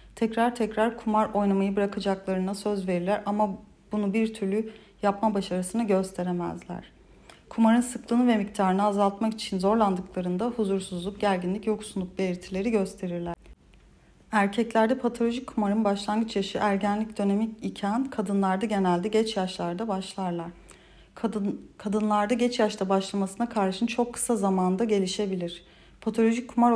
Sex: female